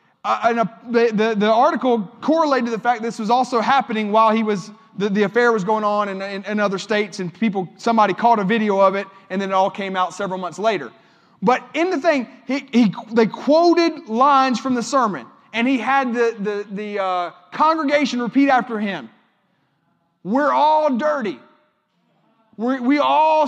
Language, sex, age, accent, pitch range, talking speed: English, male, 30-49, American, 215-300 Hz, 185 wpm